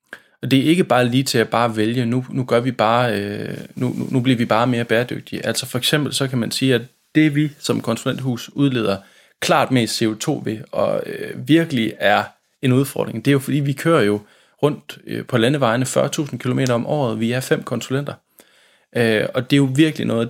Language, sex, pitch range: Danish, male, 115-140 Hz